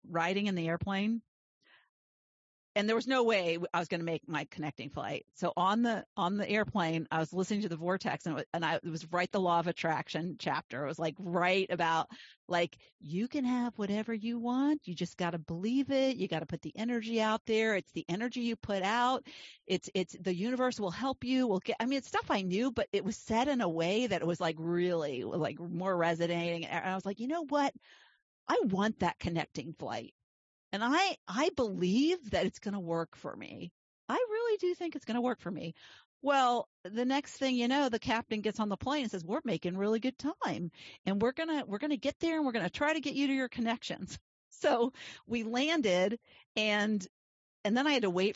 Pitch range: 175-245 Hz